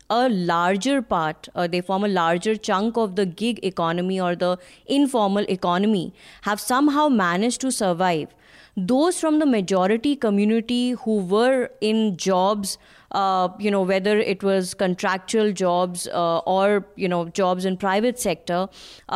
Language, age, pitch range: English, 20-39, 190-235 Hz